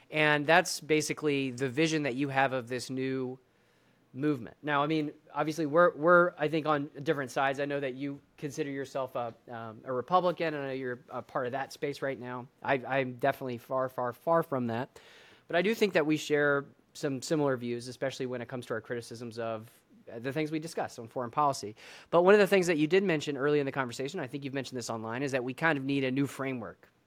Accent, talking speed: American, 230 wpm